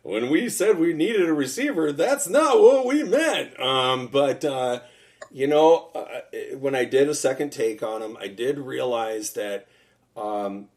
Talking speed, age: 175 wpm, 40-59